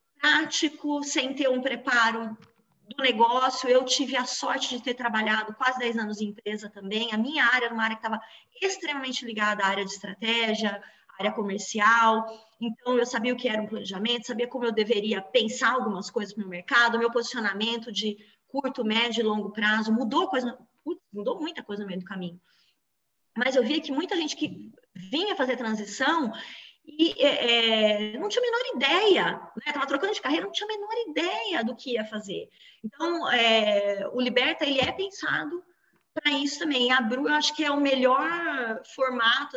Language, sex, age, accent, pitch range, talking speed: Portuguese, female, 20-39, Brazilian, 220-285 Hz, 185 wpm